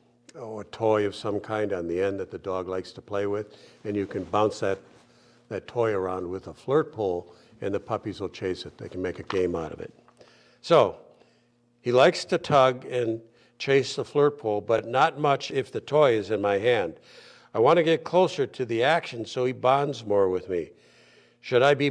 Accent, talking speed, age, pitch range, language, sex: American, 215 wpm, 60-79, 100-130 Hz, English, male